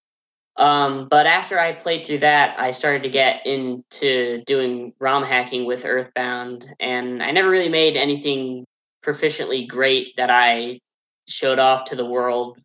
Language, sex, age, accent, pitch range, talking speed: English, male, 10-29, American, 125-140 Hz, 145 wpm